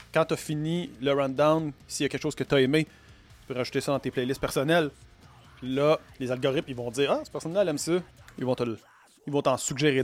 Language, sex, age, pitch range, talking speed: French, male, 30-49, 135-185 Hz, 235 wpm